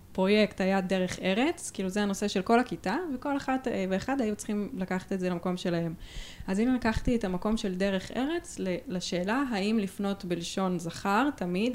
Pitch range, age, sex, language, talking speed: 180-215 Hz, 20-39, female, Hebrew, 175 wpm